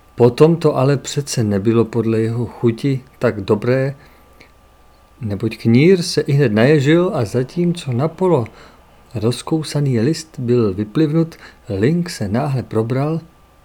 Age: 50-69